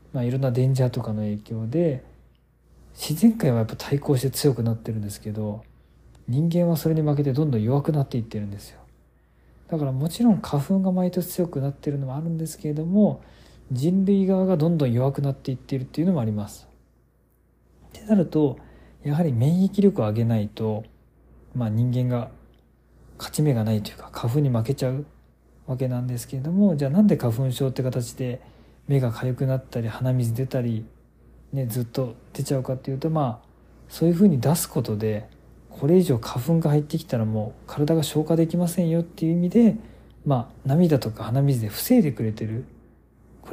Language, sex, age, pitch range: Japanese, male, 40-59, 120-155 Hz